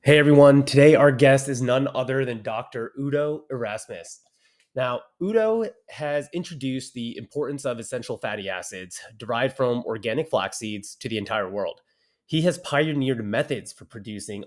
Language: English